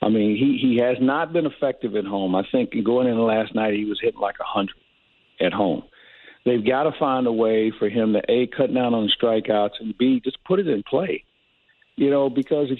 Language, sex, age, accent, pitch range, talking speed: English, male, 50-69, American, 115-155 Hz, 230 wpm